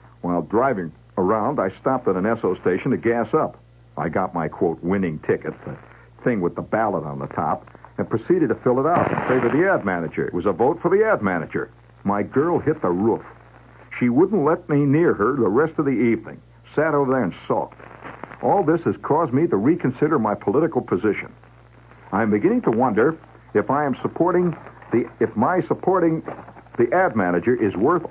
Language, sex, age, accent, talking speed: English, male, 60-79, American, 200 wpm